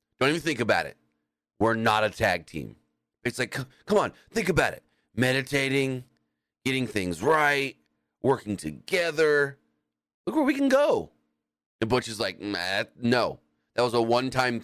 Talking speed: 150 wpm